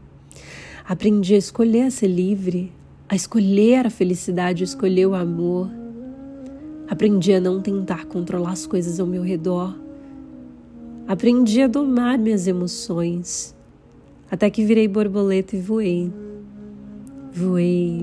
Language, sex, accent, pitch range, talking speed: Portuguese, female, Brazilian, 180-235 Hz, 120 wpm